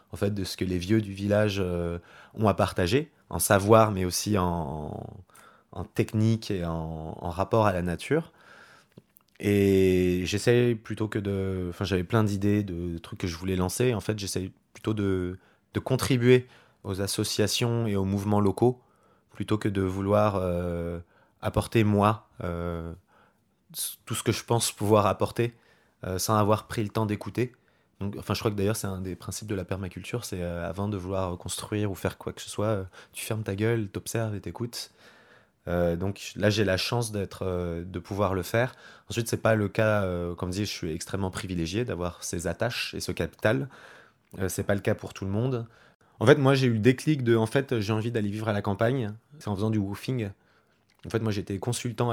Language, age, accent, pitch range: French, 20-39, French, 95-115 Hz